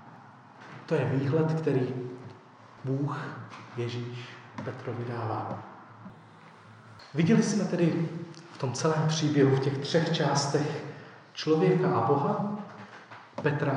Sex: male